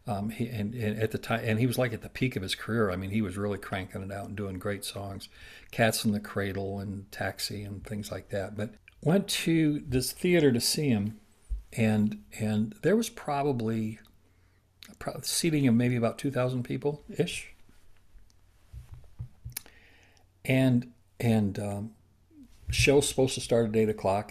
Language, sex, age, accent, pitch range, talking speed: English, male, 60-79, American, 100-120 Hz, 175 wpm